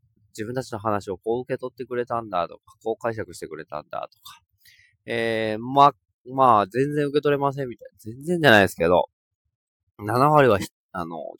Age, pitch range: 20-39, 90-140 Hz